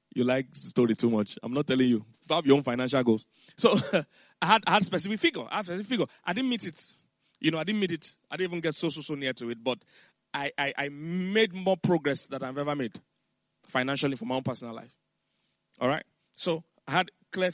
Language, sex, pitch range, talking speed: English, male, 135-165 Hz, 240 wpm